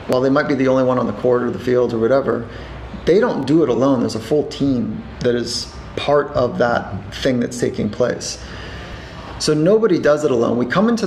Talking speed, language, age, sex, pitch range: 220 wpm, English, 30-49, male, 120-140 Hz